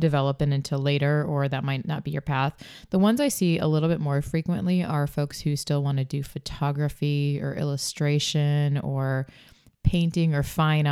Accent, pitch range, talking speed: American, 140-160 Hz, 180 wpm